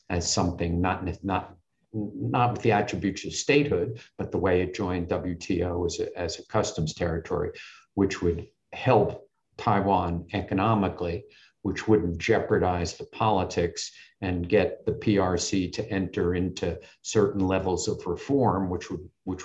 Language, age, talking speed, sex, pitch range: English, 50-69, 140 wpm, male, 90-105 Hz